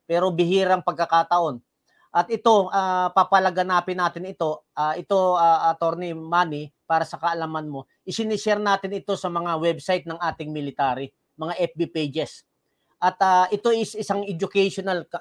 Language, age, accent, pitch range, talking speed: English, 40-59, Filipino, 165-200 Hz, 145 wpm